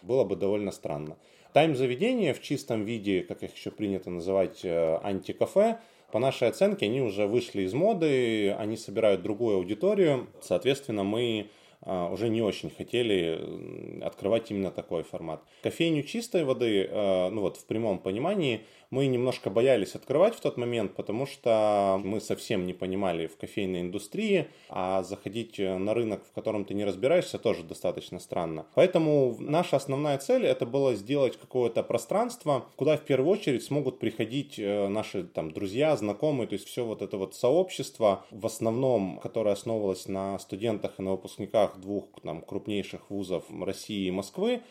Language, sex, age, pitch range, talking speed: Russian, male, 20-39, 95-130 Hz, 155 wpm